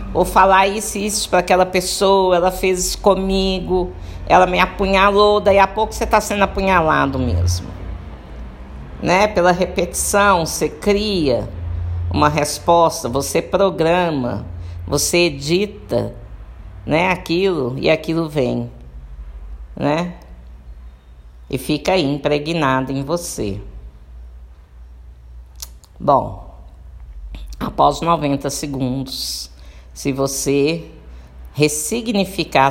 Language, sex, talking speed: Portuguese, female, 95 wpm